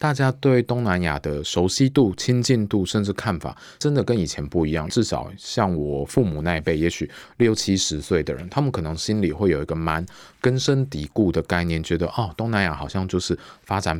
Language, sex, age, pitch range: Chinese, male, 20-39, 80-115 Hz